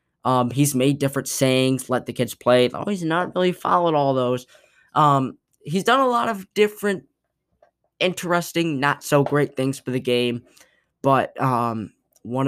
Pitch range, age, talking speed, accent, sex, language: 115-140 Hz, 10-29, 150 wpm, American, male, English